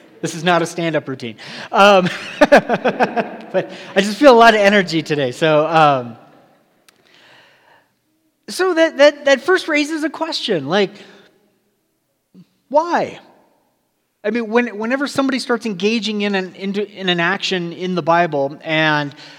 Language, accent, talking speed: English, American, 140 wpm